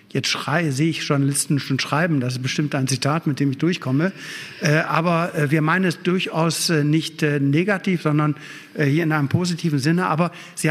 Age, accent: 60-79, German